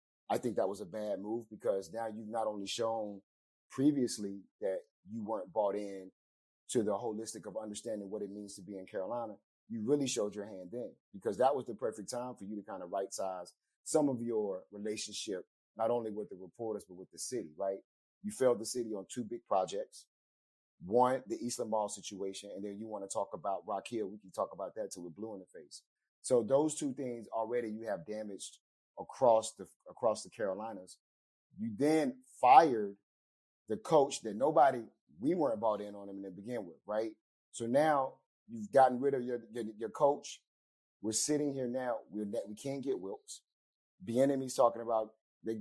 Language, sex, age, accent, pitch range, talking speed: English, male, 30-49, American, 100-135 Hz, 200 wpm